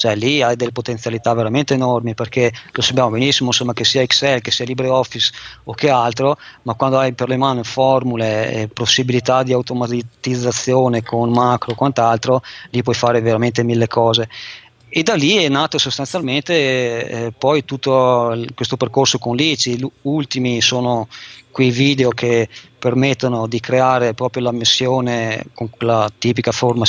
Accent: native